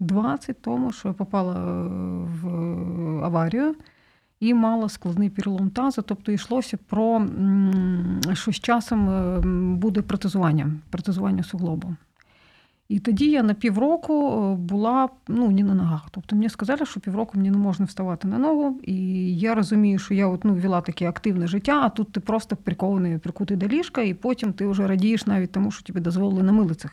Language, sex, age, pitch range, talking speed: Ukrainian, female, 40-59, 180-220 Hz, 165 wpm